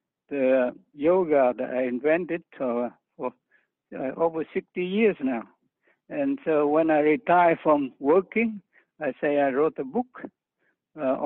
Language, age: English, 60-79